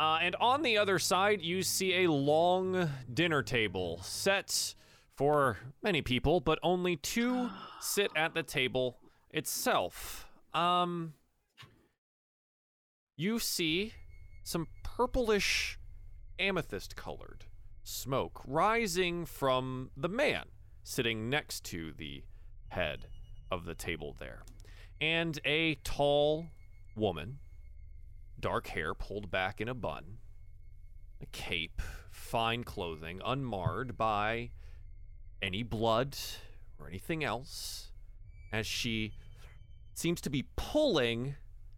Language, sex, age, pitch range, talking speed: English, male, 30-49, 95-145 Hz, 105 wpm